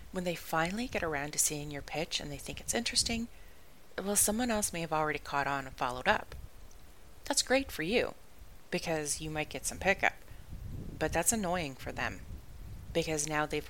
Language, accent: English, American